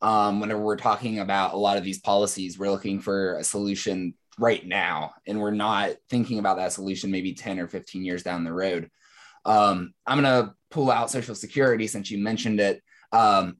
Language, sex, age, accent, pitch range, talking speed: English, male, 20-39, American, 100-125 Hz, 195 wpm